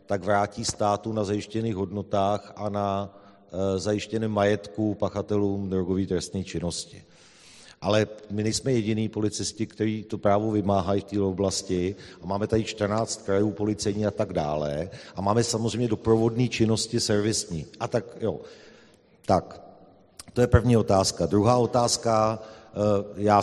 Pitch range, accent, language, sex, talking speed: 100-110 Hz, native, Czech, male, 135 wpm